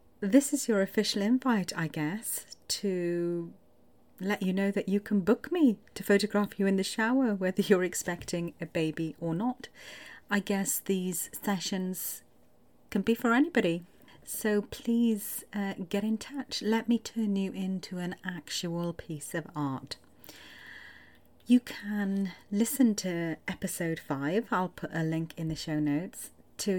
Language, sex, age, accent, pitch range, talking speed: English, female, 40-59, British, 160-205 Hz, 150 wpm